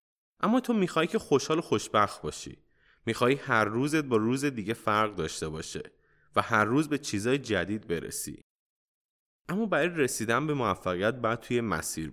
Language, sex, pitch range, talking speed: Persian, male, 105-140 Hz, 160 wpm